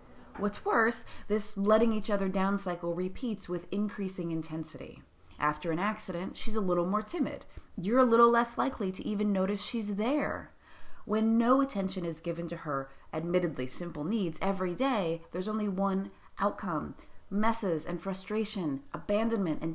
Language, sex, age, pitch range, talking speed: English, female, 30-49, 165-215 Hz, 155 wpm